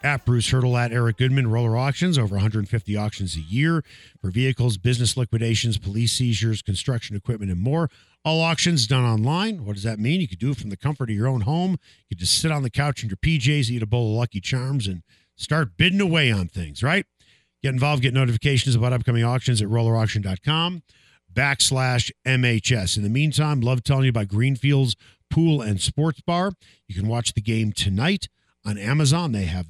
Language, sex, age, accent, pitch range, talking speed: English, male, 50-69, American, 105-145 Hz, 200 wpm